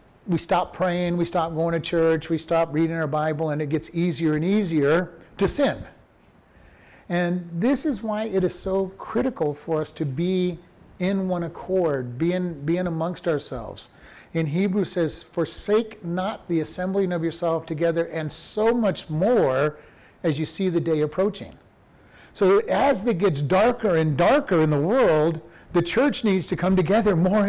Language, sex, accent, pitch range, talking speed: English, male, American, 160-205 Hz, 170 wpm